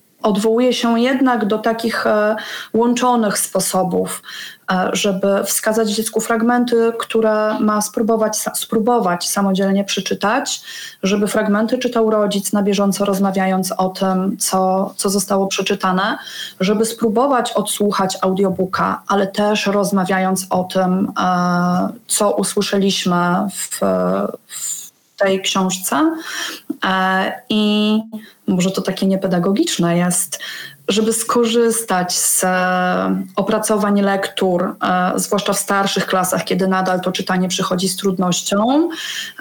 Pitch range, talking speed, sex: 195-230 Hz, 110 wpm, female